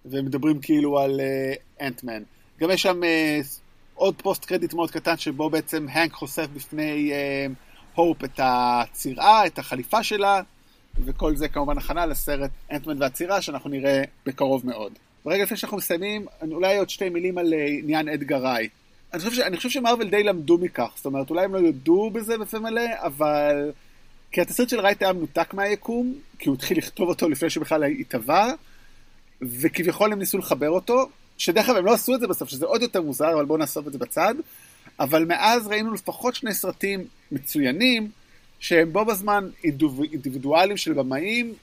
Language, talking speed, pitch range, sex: Hebrew, 175 wpm, 145-205 Hz, male